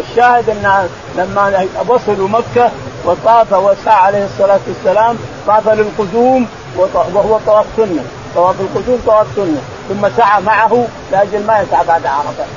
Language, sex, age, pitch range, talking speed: Arabic, male, 50-69, 185-230 Hz, 135 wpm